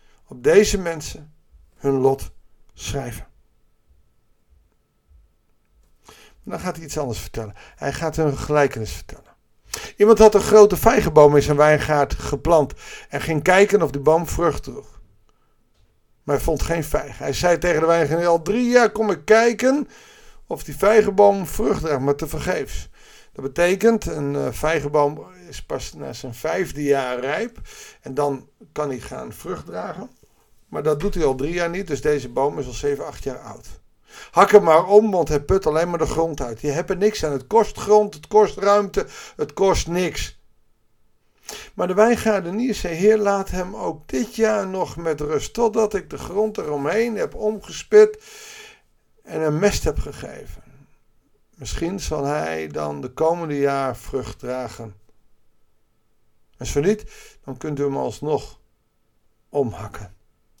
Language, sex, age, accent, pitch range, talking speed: Dutch, male, 50-69, Dutch, 135-205 Hz, 160 wpm